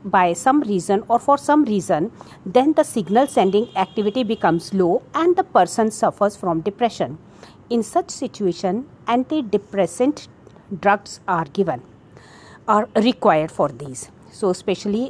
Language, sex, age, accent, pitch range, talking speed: English, female, 50-69, Indian, 180-230 Hz, 130 wpm